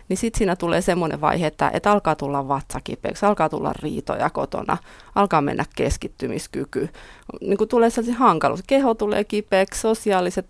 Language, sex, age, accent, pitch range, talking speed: Finnish, female, 30-49, native, 155-200 Hz, 155 wpm